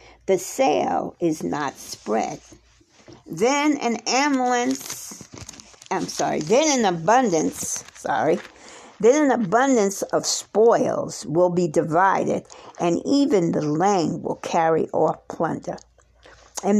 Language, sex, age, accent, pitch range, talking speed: English, female, 60-79, American, 180-260 Hz, 110 wpm